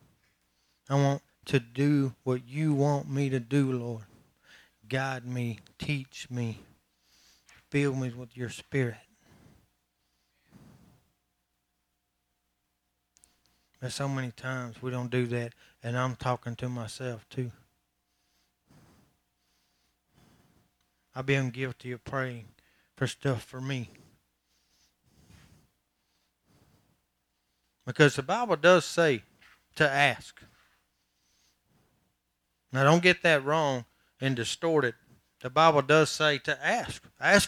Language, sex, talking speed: English, male, 105 wpm